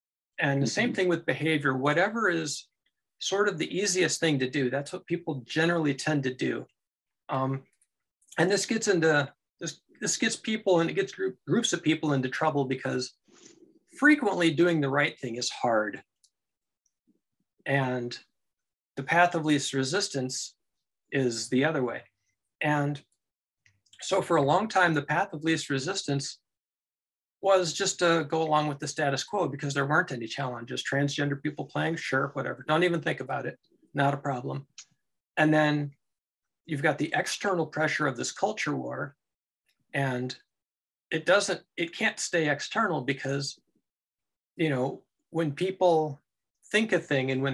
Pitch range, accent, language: 130-170 Hz, American, English